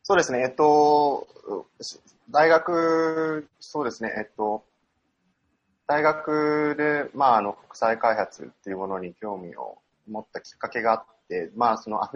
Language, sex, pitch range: Japanese, male, 100-140 Hz